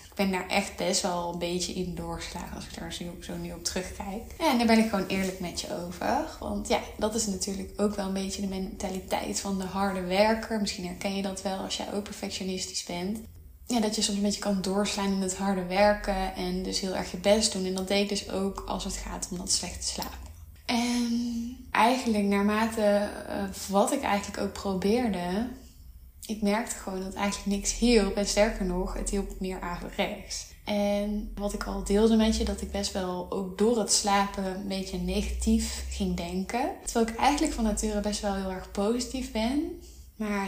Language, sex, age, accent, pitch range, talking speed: Dutch, female, 20-39, Dutch, 190-215 Hz, 205 wpm